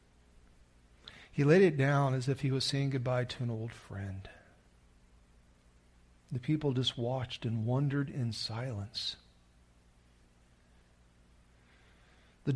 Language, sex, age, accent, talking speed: English, male, 50-69, American, 110 wpm